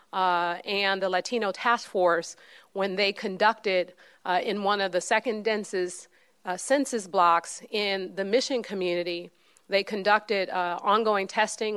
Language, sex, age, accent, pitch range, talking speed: English, female, 40-59, American, 185-220 Hz, 145 wpm